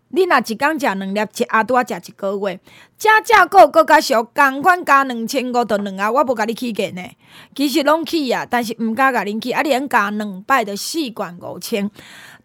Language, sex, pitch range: Chinese, female, 220-310 Hz